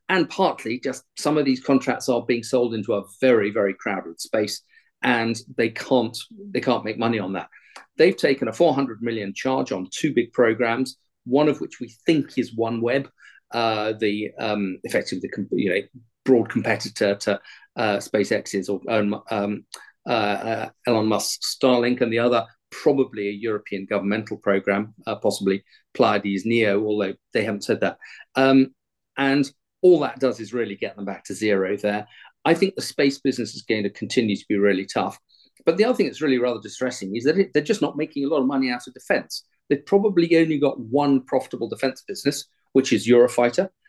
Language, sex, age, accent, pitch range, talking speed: English, male, 40-59, British, 105-135 Hz, 185 wpm